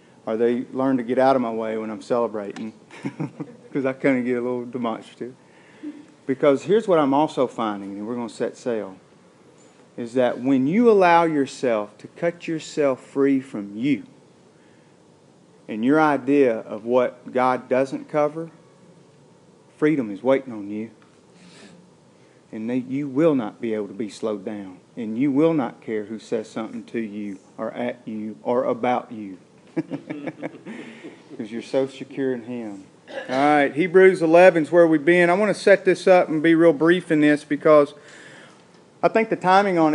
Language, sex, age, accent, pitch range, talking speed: English, male, 40-59, American, 130-165 Hz, 170 wpm